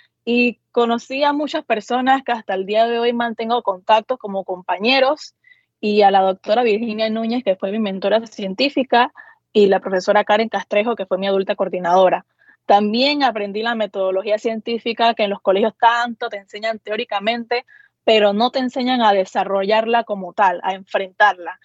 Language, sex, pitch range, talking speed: Spanish, female, 200-240 Hz, 165 wpm